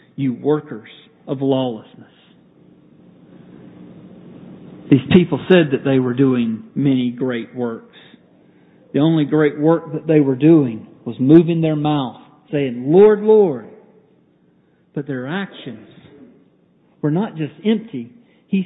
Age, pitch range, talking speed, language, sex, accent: 50-69, 130-170 Hz, 120 wpm, English, male, American